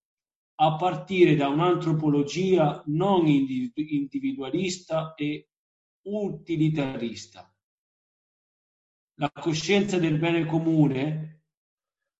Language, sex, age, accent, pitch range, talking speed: Italian, male, 40-59, native, 140-180 Hz, 65 wpm